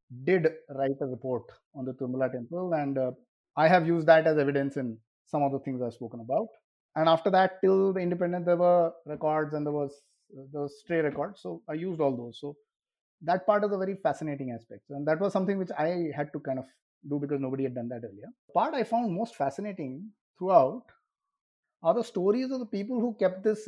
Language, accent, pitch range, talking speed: English, Indian, 140-185 Hz, 215 wpm